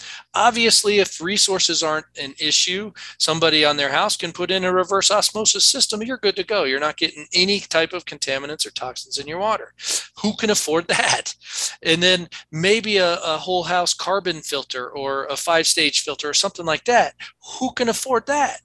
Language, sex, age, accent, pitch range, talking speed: English, male, 40-59, American, 145-190 Hz, 185 wpm